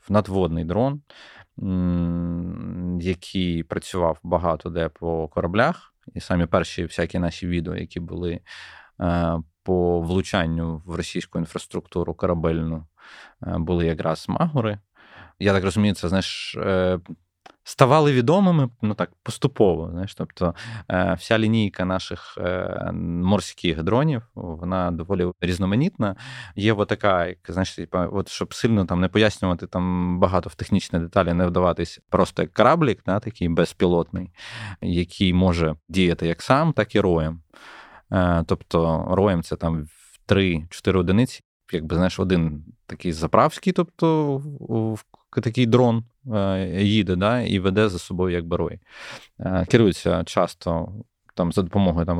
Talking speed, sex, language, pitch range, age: 125 wpm, male, Ukrainian, 85-105 Hz, 20-39